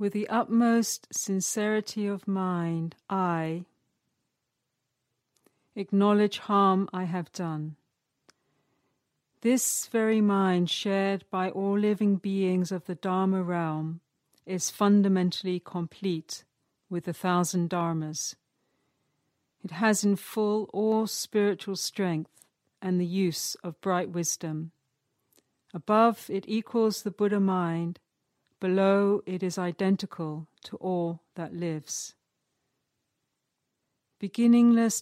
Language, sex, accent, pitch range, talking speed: English, female, British, 175-205 Hz, 100 wpm